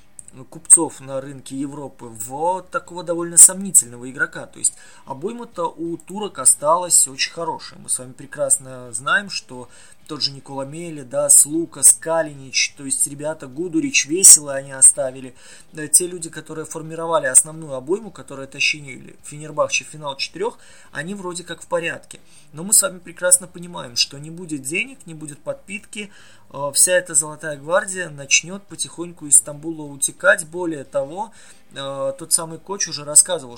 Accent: native